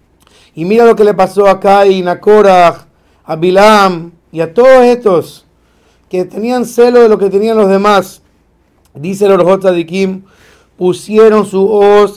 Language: Spanish